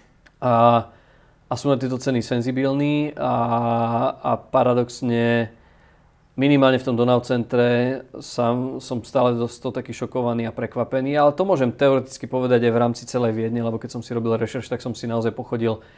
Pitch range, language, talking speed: 115-125 Hz, Slovak, 160 wpm